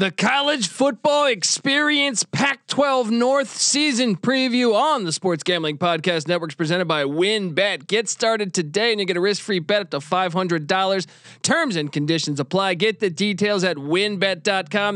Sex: male